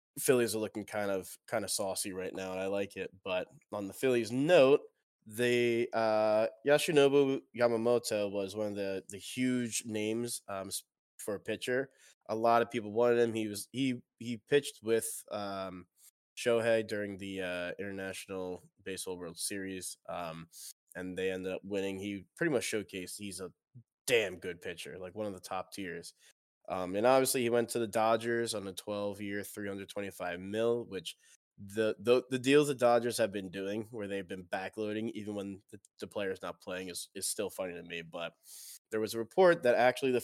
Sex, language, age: male, English, 20-39